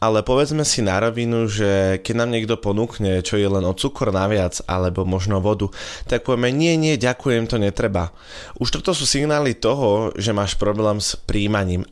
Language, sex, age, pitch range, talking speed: Slovak, male, 20-39, 100-115 Hz, 180 wpm